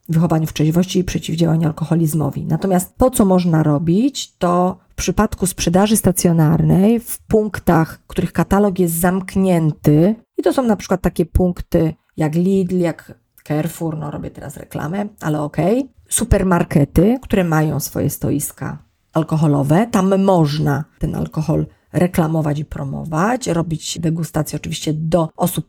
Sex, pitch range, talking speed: female, 160-205 Hz, 130 wpm